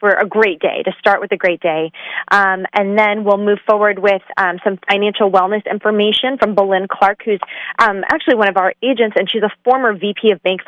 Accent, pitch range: American, 185-225 Hz